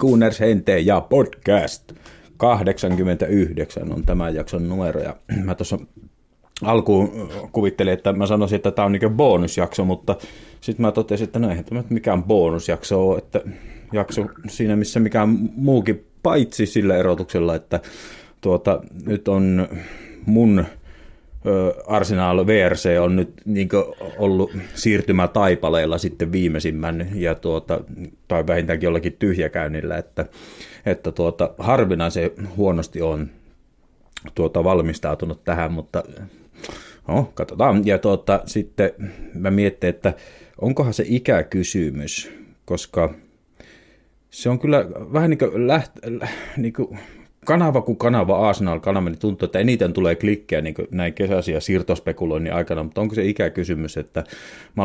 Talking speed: 125 wpm